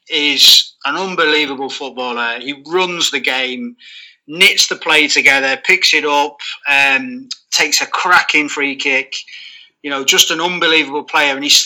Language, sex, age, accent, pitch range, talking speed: English, male, 30-49, British, 130-165 Hz, 150 wpm